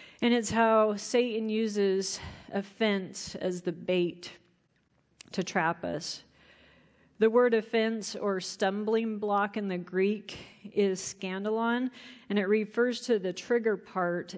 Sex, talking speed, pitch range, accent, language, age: female, 125 wpm, 185-230 Hz, American, English, 40-59